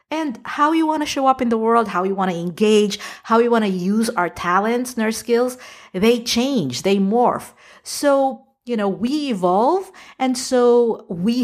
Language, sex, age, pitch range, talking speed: English, female, 50-69, 180-255 Hz, 195 wpm